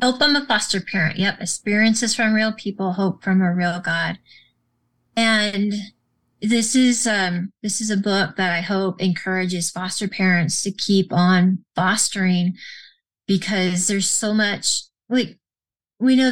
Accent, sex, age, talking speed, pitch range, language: American, female, 30-49, 145 wpm, 190-225 Hz, English